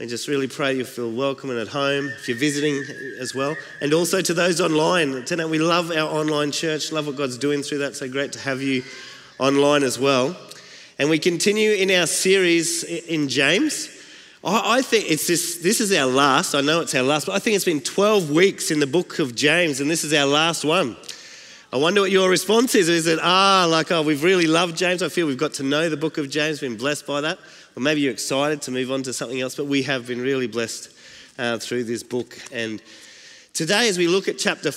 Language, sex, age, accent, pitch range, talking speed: English, male, 30-49, Australian, 140-180 Hz, 230 wpm